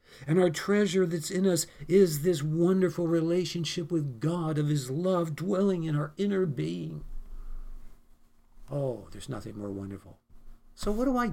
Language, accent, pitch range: English, American, 110-165 Hz